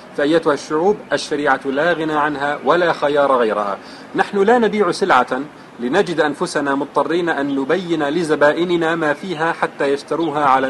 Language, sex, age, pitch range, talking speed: Arabic, male, 40-59, 140-175 Hz, 135 wpm